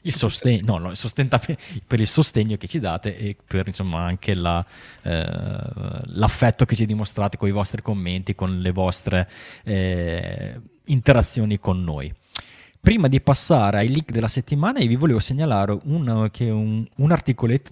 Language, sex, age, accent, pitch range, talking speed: Italian, male, 20-39, native, 105-125 Hz, 160 wpm